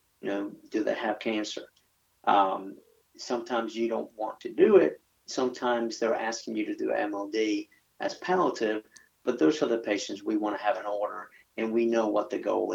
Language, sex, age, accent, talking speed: English, male, 50-69, American, 190 wpm